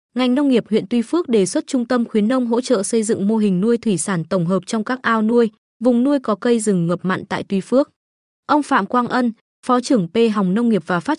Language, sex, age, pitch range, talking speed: Vietnamese, female, 20-39, 195-245 Hz, 265 wpm